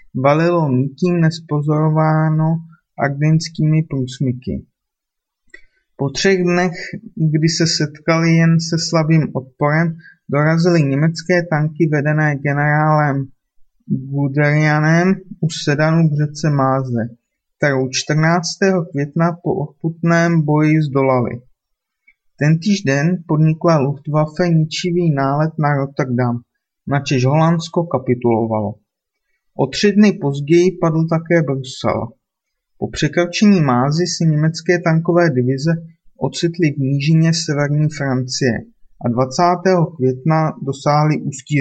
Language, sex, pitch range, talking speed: Czech, male, 135-165 Hz, 100 wpm